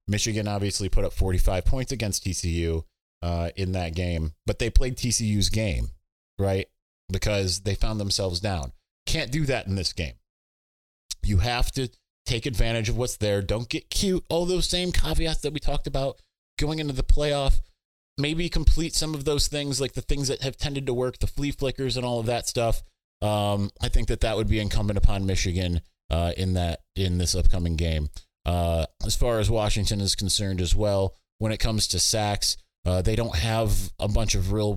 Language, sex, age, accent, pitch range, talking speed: English, male, 30-49, American, 90-115 Hz, 195 wpm